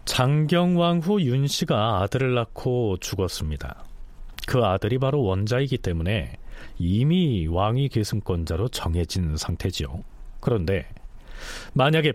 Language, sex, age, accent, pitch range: Korean, male, 40-59, native, 100-155 Hz